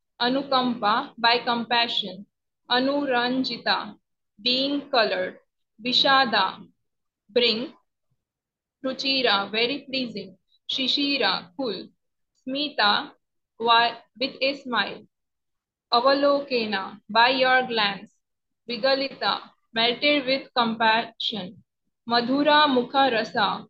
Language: English